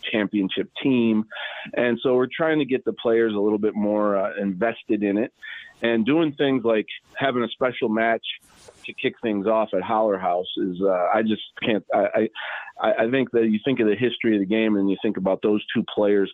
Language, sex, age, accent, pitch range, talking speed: English, male, 40-59, American, 95-115 Hz, 215 wpm